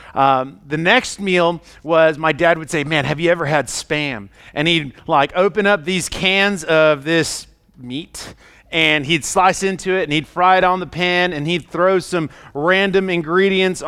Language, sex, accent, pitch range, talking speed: English, male, American, 145-190 Hz, 185 wpm